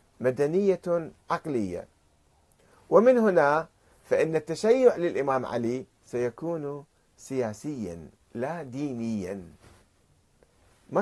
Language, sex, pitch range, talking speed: Arabic, male, 110-170 Hz, 70 wpm